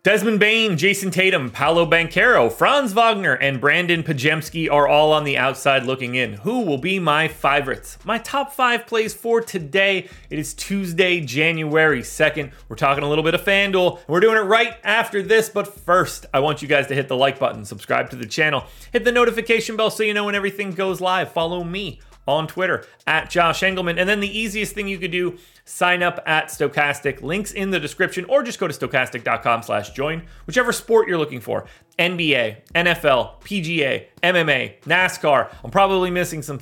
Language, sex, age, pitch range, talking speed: English, male, 30-49, 150-205 Hz, 190 wpm